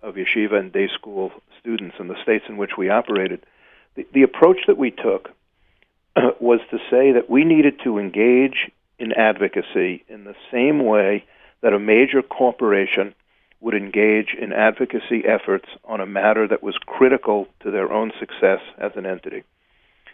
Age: 50-69